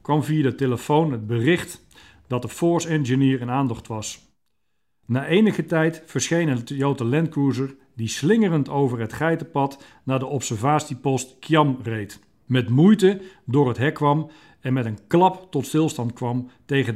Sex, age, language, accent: male, 50-69, Dutch, Dutch